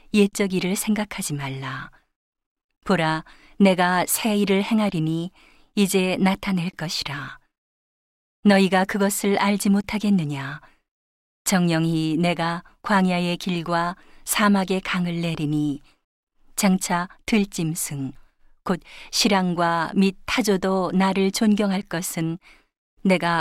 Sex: female